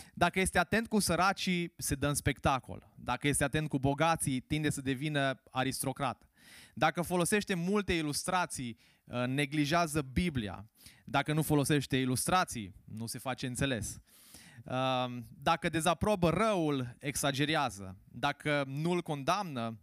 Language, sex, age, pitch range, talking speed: Romanian, male, 20-39, 125-170 Hz, 120 wpm